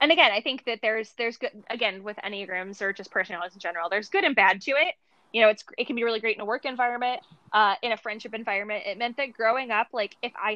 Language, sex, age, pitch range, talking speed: English, female, 10-29, 200-240 Hz, 265 wpm